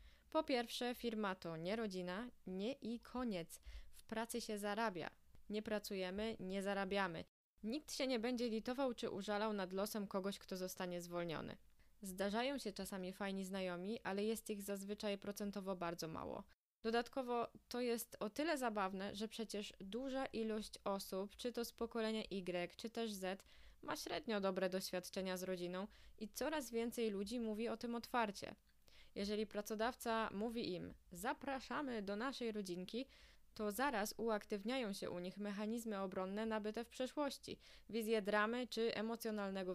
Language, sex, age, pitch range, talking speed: Polish, female, 20-39, 190-230 Hz, 150 wpm